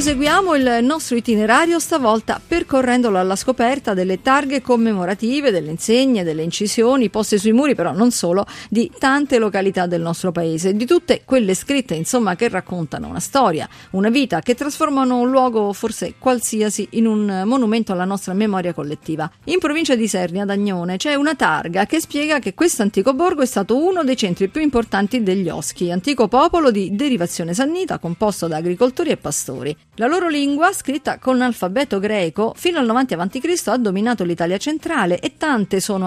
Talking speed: 170 wpm